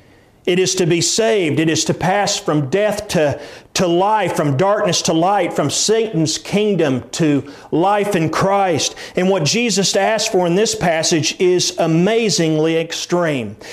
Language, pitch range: English, 170-210 Hz